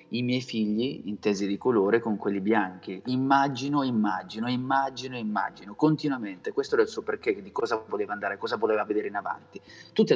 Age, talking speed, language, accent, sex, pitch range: 30-49, 170 wpm, Italian, native, male, 105-135 Hz